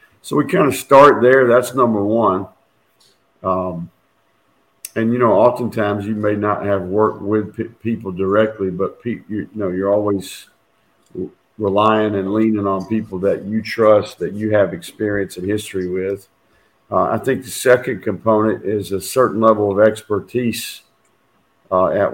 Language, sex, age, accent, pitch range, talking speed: English, male, 50-69, American, 95-110 Hz, 155 wpm